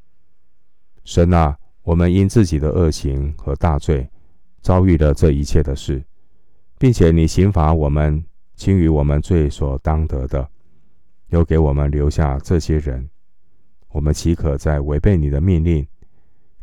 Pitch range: 70-85 Hz